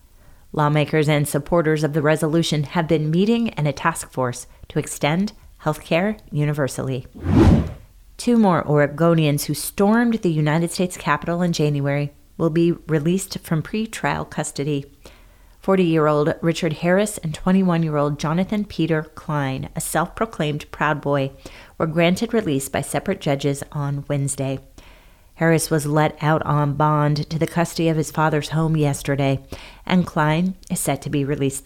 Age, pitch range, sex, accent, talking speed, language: 30-49, 145-175 Hz, female, American, 145 wpm, English